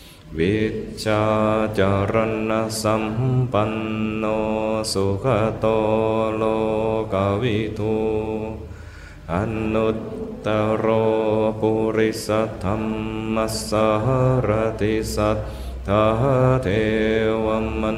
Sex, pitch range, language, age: male, 105-110 Hz, Thai, 20-39